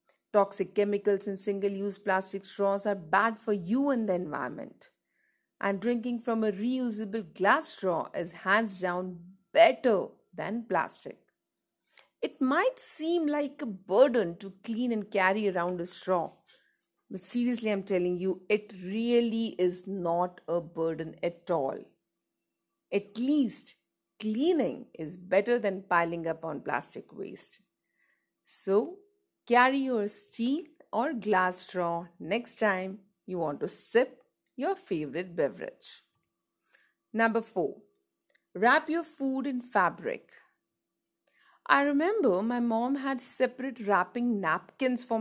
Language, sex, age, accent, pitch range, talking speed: English, female, 50-69, Indian, 185-240 Hz, 125 wpm